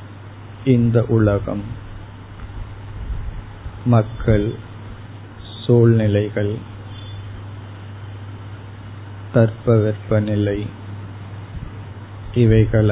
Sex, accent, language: male, native, Tamil